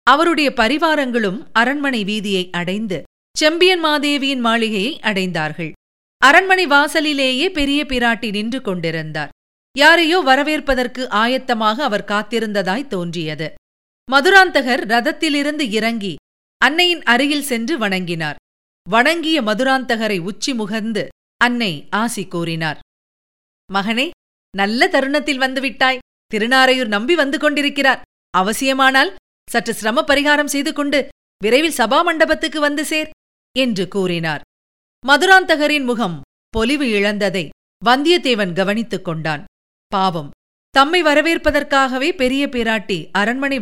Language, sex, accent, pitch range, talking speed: Tamil, female, native, 200-290 Hz, 95 wpm